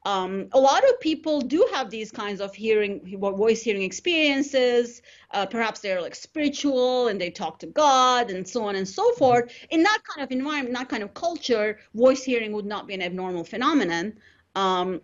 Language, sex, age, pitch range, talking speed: English, female, 30-49, 190-255 Hz, 180 wpm